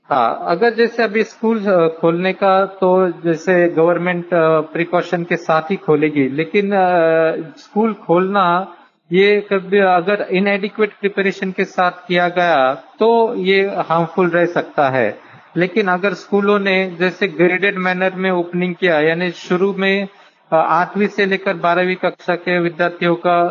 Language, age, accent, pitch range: Hindi, 50-69, native, 165-195 Hz